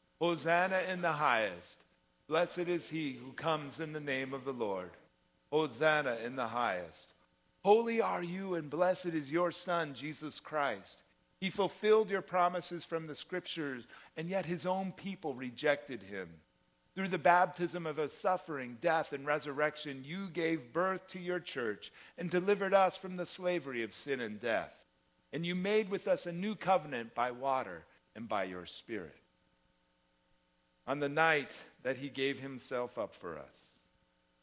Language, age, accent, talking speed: English, 50-69, American, 160 wpm